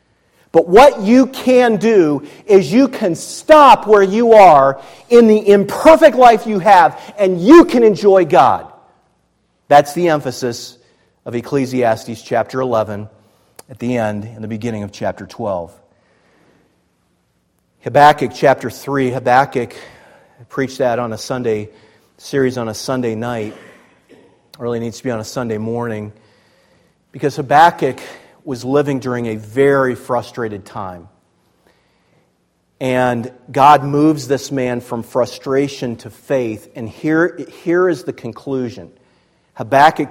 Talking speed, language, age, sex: 130 wpm, English, 40-59, male